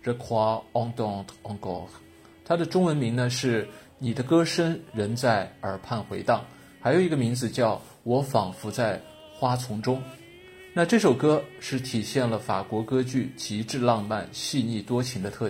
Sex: male